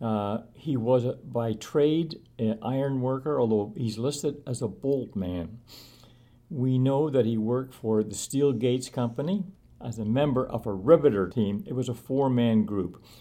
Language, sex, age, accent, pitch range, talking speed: English, male, 60-79, American, 115-135 Hz, 170 wpm